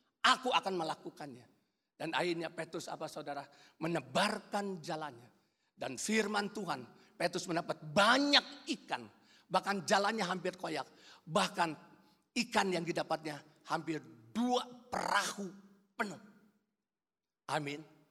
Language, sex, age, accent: Indonesian, male, 50-69, native